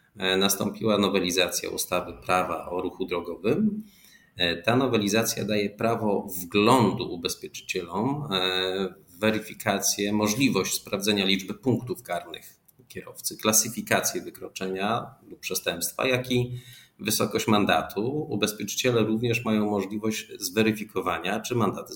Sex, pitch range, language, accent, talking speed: male, 90-115 Hz, Polish, native, 100 wpm